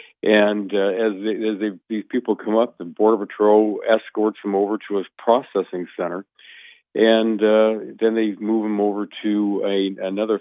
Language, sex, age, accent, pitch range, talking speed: English, male, 50-69, American, 100-115 Hz, 175 wpm